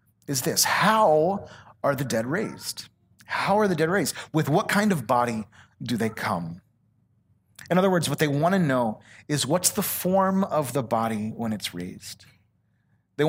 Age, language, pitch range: 30-49, English, 115-185 Hz